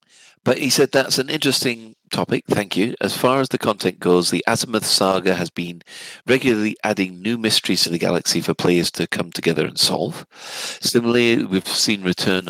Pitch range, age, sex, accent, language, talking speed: 90-115 Hz, 40-59, male, British, English, 180 wpm